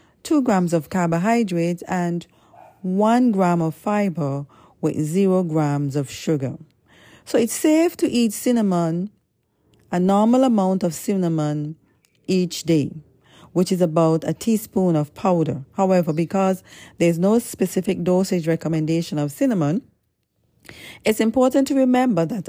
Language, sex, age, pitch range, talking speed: English, female, 40-59, 155-205 Hz, 130 wpm